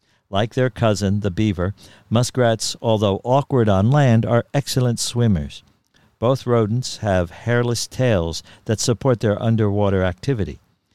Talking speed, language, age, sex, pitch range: 125 wpm, English, 60-79, male, 100-125 Hz